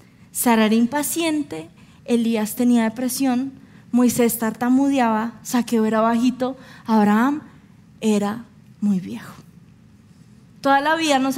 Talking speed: 100 wpm